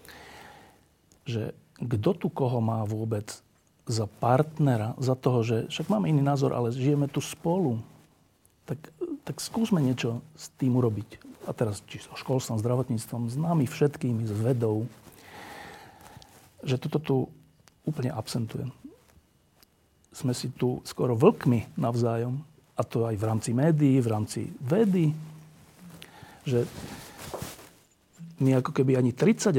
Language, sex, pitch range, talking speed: Slovak, male, 115-150 Hz, 130 wpm